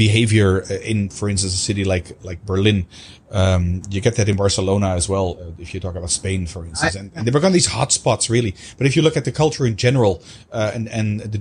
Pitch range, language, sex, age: 95-125 Hz, English, male, 30-49